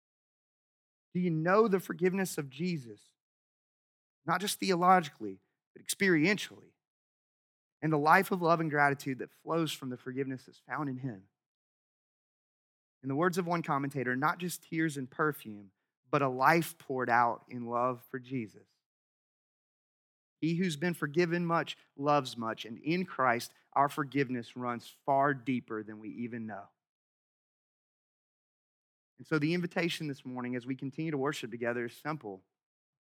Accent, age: American, 30-49